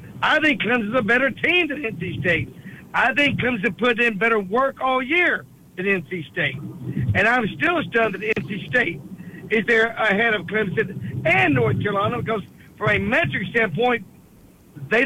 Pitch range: 195-255 Hz